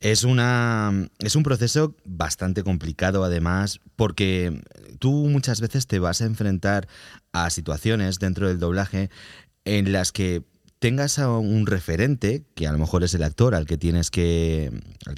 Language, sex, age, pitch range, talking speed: Spanish, male, 30-49, 90-115 Hz, 160 wpm